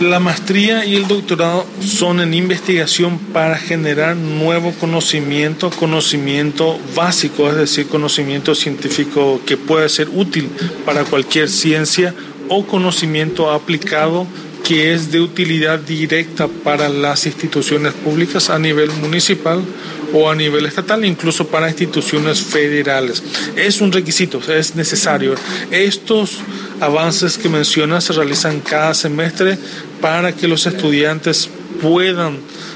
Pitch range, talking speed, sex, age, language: 145-170 Hz, 120 wpm, male, 40-59, Spanish